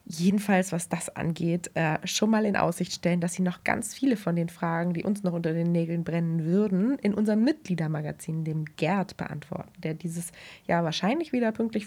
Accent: German